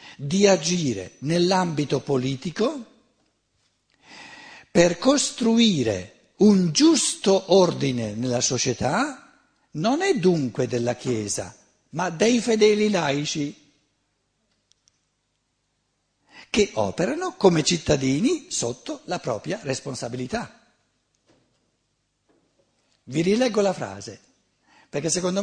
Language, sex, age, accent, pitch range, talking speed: Italian, male, 60-79, native, 130-205 Hz, 80 wpm